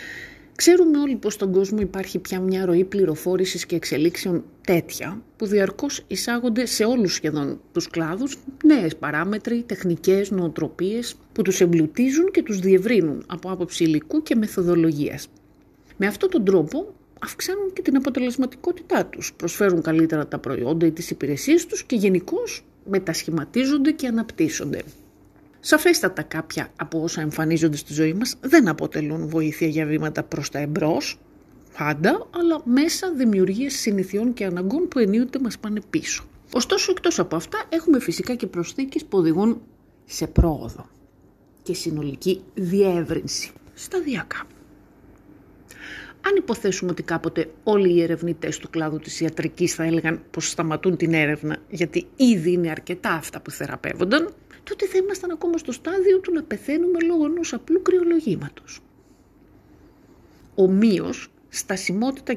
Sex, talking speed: female, 135 wpm